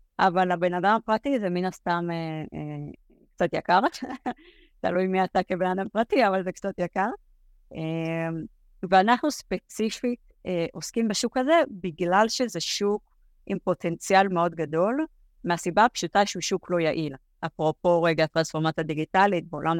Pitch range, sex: 165-195 Hz, female